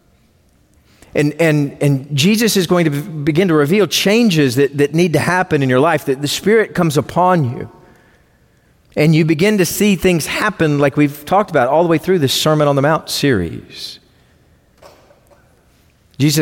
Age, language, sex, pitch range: 40-59, English, male, 135-185 Hz